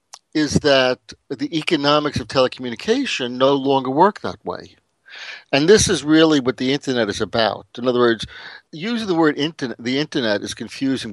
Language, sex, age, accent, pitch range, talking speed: English, male, 60-79, American, 115-150 Hz, 165 wpm